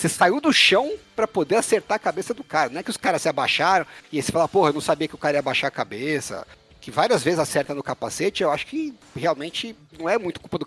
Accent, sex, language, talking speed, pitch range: Brazilian, male, Portuguese, 270 wpm, 140-230 Hz